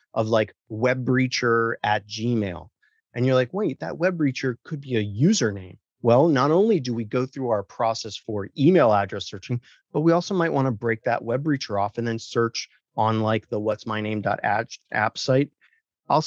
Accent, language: American, English